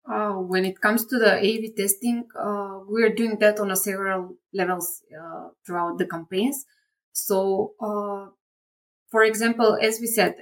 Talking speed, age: 155 wpm, 20-39